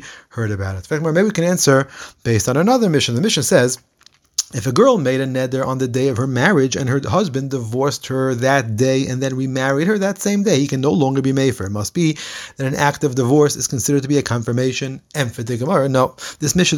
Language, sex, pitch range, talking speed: English, male, 125-160 Hz, 240 wpm